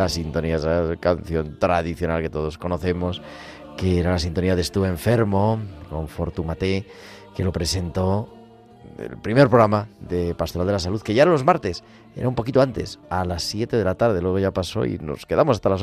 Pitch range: 85-105 Hz